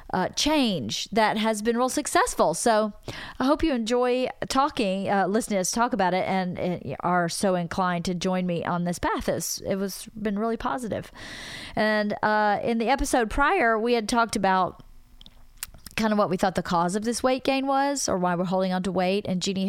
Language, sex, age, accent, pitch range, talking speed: English, female, 40-59, American, 175-220 Hz, 210 wpm